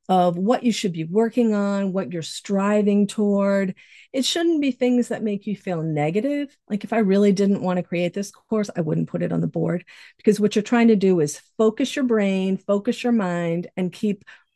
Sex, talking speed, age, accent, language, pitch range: female, 215 wpm, 40-59, American, English, 180-220 Hz